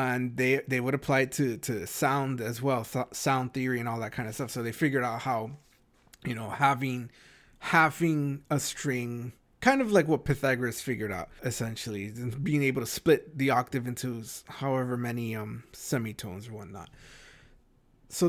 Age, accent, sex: 30-49, American, male